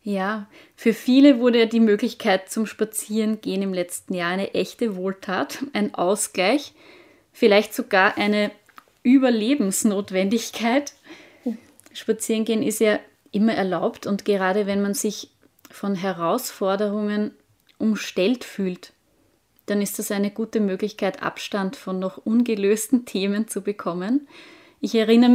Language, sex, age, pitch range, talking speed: German, female, 20-39, 195-245 Hz, 115 wpm